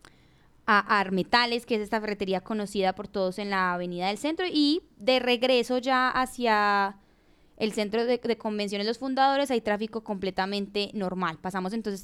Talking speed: 160 wpm